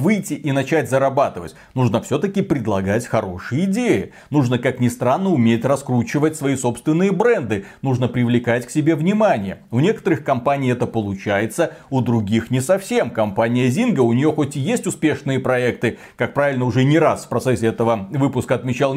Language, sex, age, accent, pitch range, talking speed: Russian, male, 30-49, native, 120-170 Hz, 160 wpm